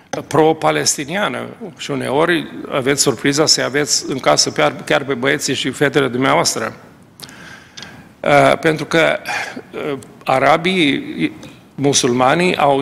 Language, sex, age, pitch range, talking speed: Romanian, male, 40-59, 130-155 Hz, 95 wpm